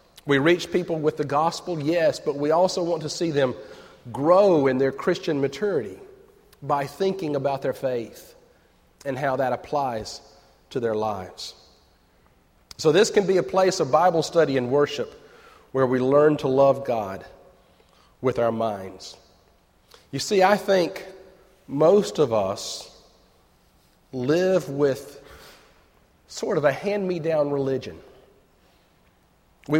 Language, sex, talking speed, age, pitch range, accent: English, male, 135 wpm, 40-59, 135-190 Hz, American